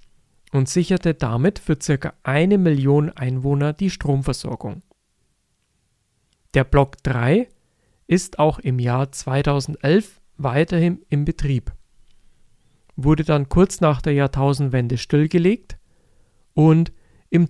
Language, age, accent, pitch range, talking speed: German, 40-59, German, 130-165 Hz, 105 wpm